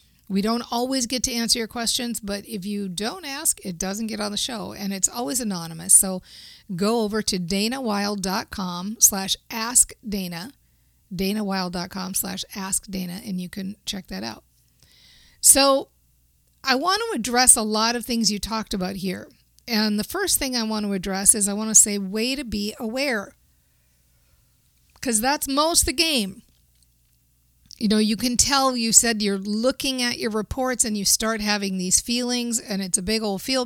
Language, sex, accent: English, female, American